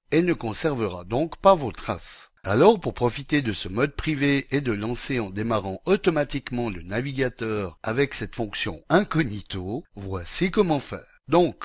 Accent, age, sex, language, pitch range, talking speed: French, 60-79, male, French, 105-160 Hz, 155 wpm